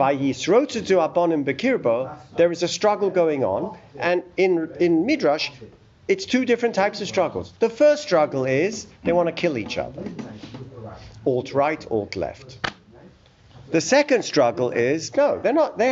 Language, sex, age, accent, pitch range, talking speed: English, male, 50-69, British, 145-225 Hz, 160 wpm